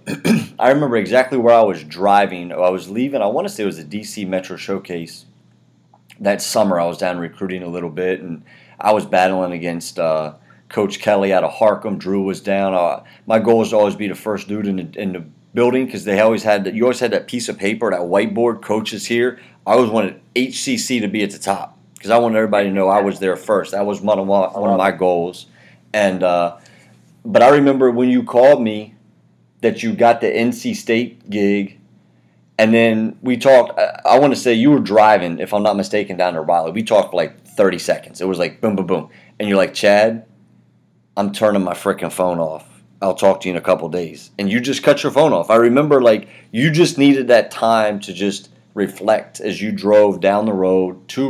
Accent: American